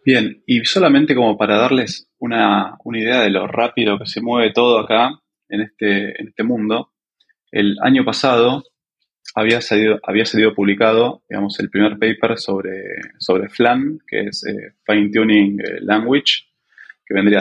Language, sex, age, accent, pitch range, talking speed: Spanish, male, 20-39, Argentinian, 100-130 Hz, 155 wpm